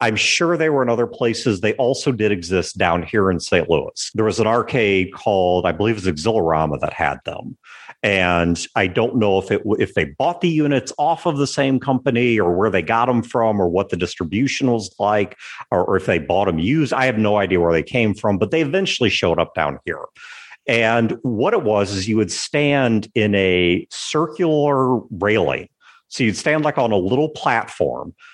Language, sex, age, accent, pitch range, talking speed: English, male, 50-69, American, 95-135 Hz, 210 wpm